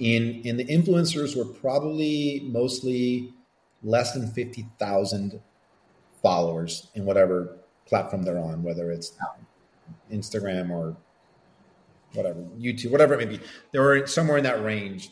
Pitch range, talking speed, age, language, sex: 100-125 Hz, 130 wpm, 40-59, English, male